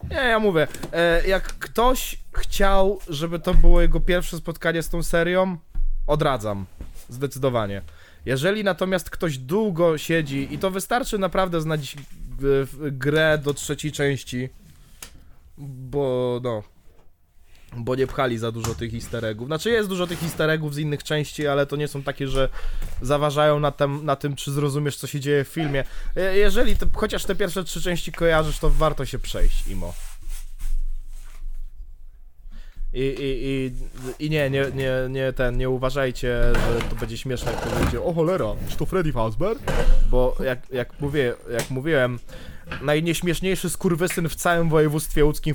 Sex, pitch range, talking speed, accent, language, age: male, 120-165 Hz, 150 wpm, native, Polish, 20-39